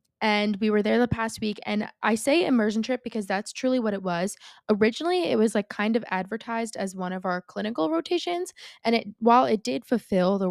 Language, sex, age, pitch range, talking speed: English, female, 20-39, 190-230 Hz, 215 wpm